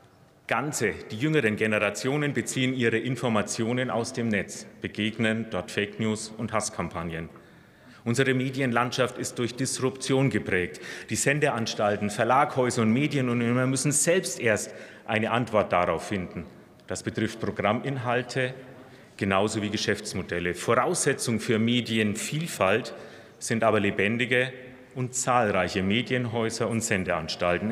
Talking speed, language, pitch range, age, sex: 110 wpm, German, 105-125 Hz, 30-49, male